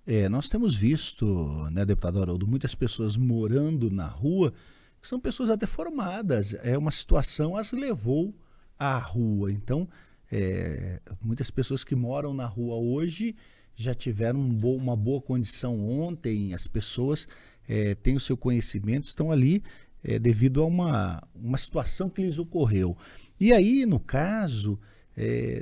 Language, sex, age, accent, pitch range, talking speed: Portuguese, male, 50-69, Brazilian, 110-155 Hz, 150 wpm